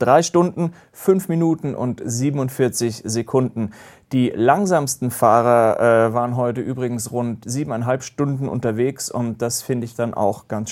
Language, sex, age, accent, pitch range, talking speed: German, male, 30-49, German, 120-150 Hz, 140 wpm